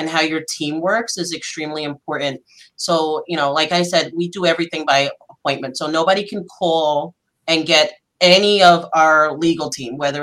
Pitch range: 160-210 Hz